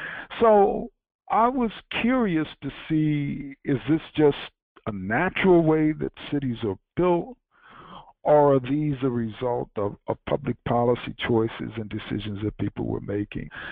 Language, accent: English, American